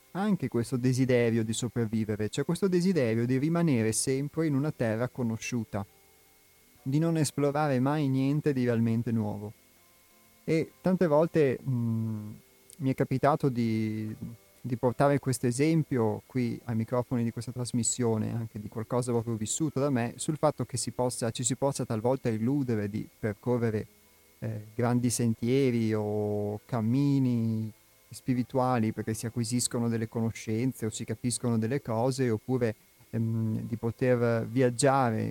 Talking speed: 135 wpm